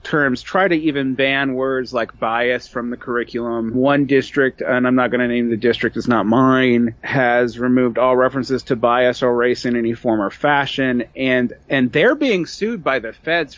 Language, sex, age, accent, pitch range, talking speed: English, male, 30-49, American, 120-145 Hz, 200 wpm